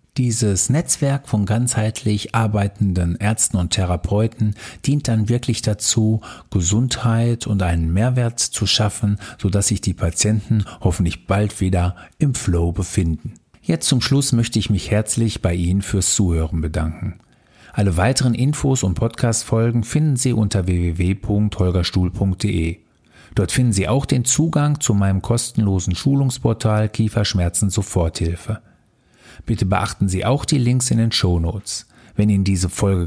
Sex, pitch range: male, 95-115 Hz